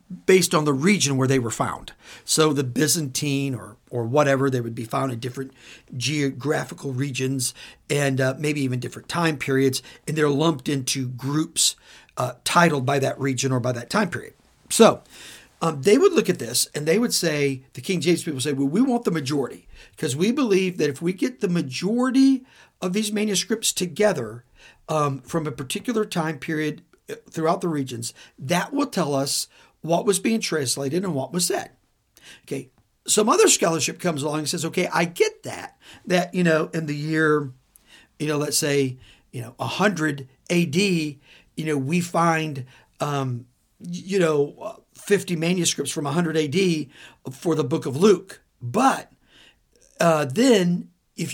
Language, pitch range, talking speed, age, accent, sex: English, 135-180 Hz, 170 wpm, 50-69, American, male